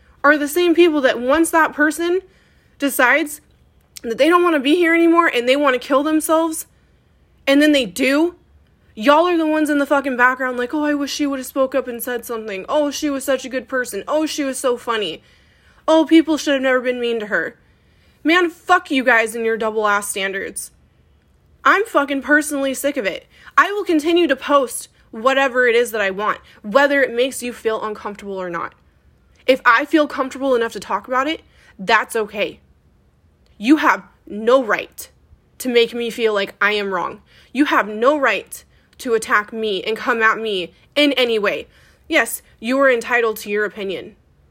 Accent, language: American, English